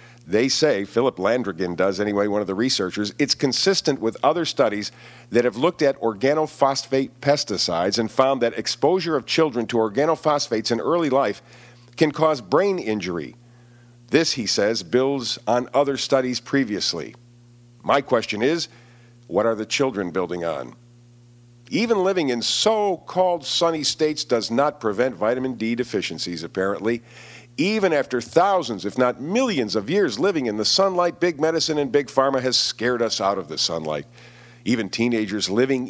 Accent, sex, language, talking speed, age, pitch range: American, male, English, 155 wpm, 50-69, 115-145 Hz